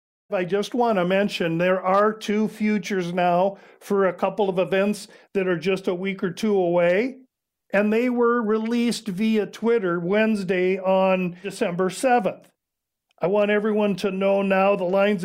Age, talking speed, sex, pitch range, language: 50-69, 160 wpm, male, 185-210 Hz, English